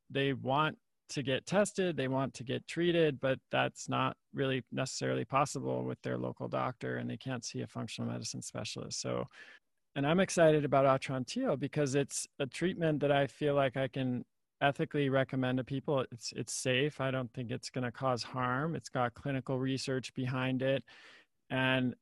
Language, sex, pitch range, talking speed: English, male, 125-140 Hz, 175 wpm